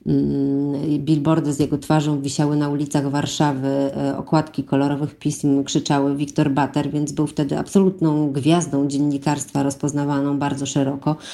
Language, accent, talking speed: Polish, native, 120 wpm